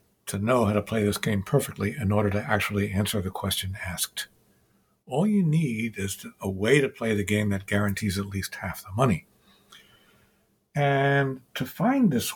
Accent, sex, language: American, male, English